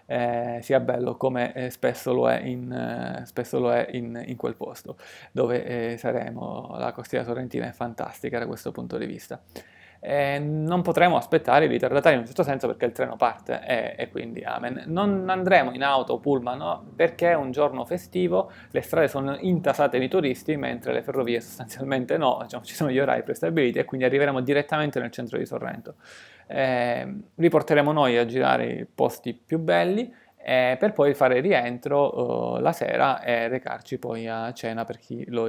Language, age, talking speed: Italian, 20-39, 190 wpm